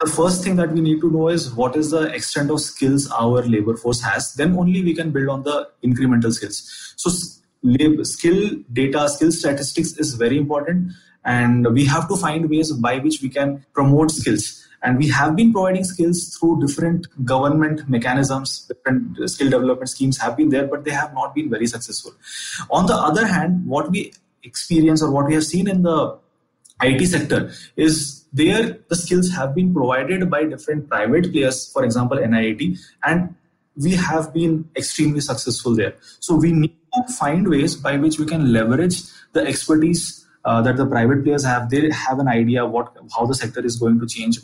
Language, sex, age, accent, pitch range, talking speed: English, male, 20-39, Indian, 125-165 Hz, 190 wpm